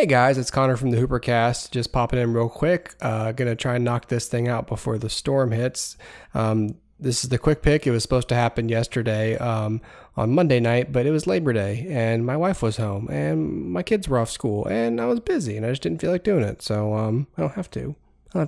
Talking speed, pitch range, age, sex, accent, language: 245 wpm, 110-130 Hz, 20-39, male, American, English